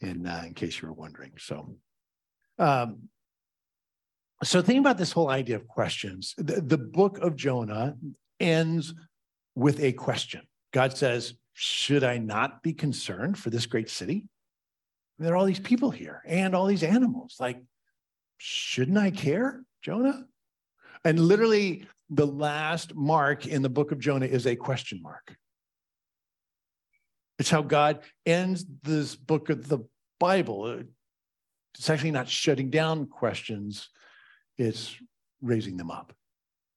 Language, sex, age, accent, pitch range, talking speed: English, male, 50-69, American, 115-165 Hz, 140 wpm